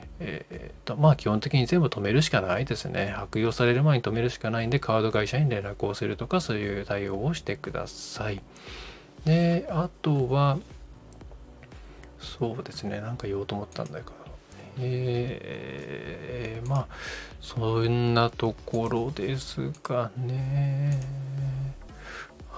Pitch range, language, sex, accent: 105-135 Hz, Japanese, male, native